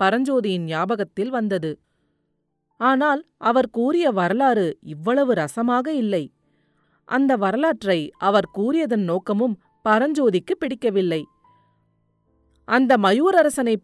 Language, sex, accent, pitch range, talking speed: Tamil, female, native, 185-260 Hz, 80 wpm